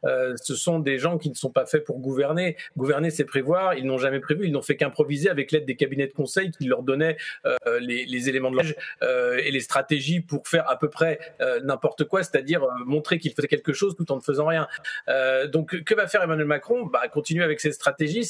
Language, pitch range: French, 140-180 Hz